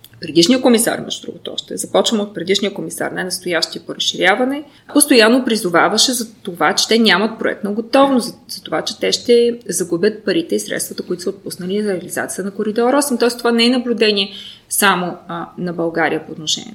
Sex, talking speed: female, 185 wpm